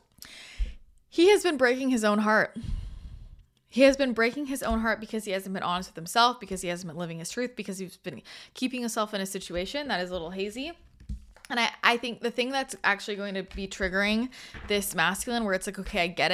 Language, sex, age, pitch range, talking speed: English, female, 20-39, 170-220 Hz, 225 wpm